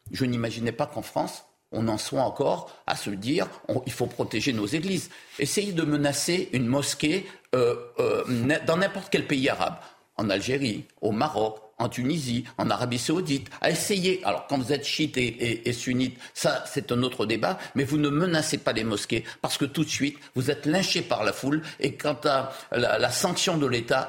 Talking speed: 200 wpm